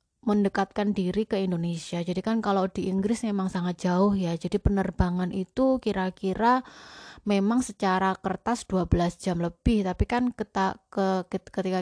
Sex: female